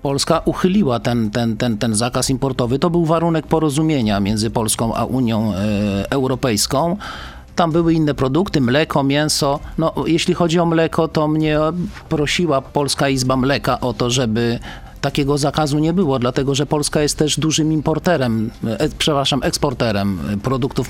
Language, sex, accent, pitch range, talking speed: Polish, male, native, 125-160 Hz, 150 wpm